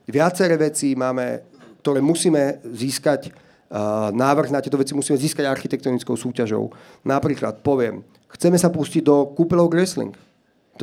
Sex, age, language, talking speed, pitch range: male, 40-59, Slovak, 135 wpm, 130-160 Hz